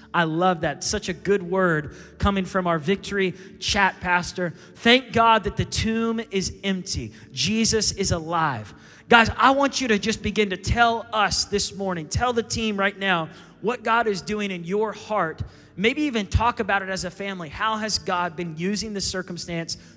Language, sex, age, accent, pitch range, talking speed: English, male, 20-39, American, 170-200 Hz, 185 wpm